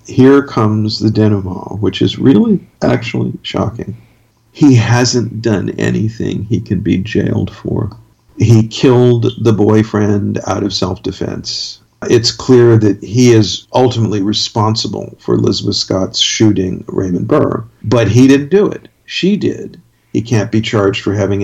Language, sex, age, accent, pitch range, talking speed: English, male, 50-69, American, 100-115 Hz, 145 wpm